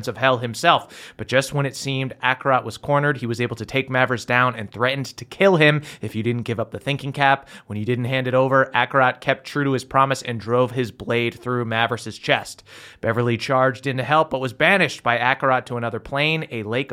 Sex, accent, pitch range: male, American, 120-140 Hz